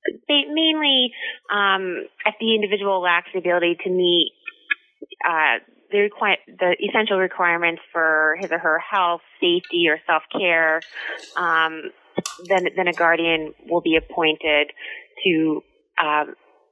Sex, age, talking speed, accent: female, 20-39, 125 wpm, American